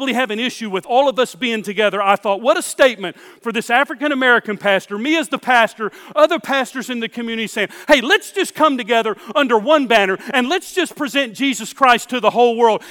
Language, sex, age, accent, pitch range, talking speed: English, male, 40-59, American, 200-255 Hz, 220 wpm